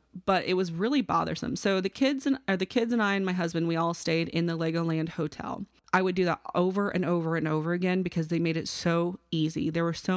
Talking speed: 250 wpm